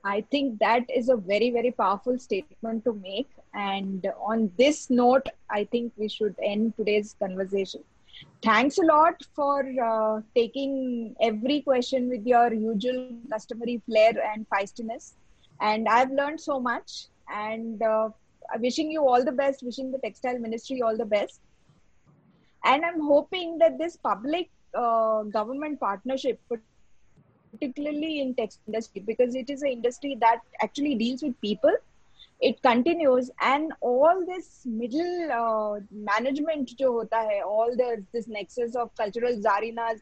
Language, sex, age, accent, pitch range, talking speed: English, female, 20-39, Indian, 220-280 Hz, 145 wpm